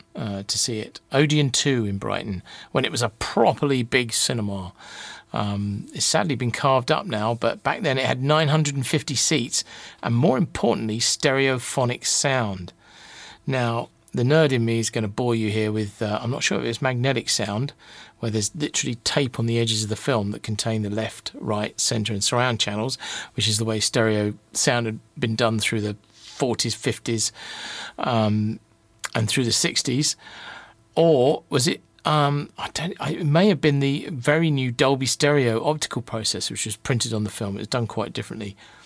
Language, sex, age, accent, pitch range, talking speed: English, male, 40-59, British, 110-145 Hz, 185 wpm